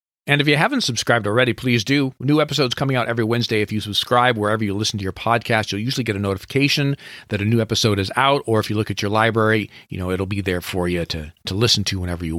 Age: 40-59